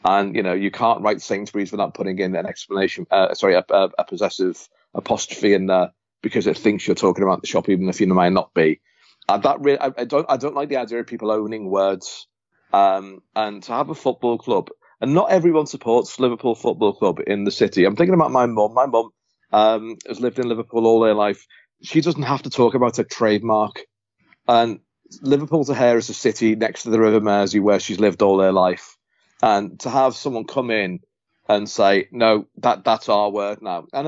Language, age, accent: English, 40-59, British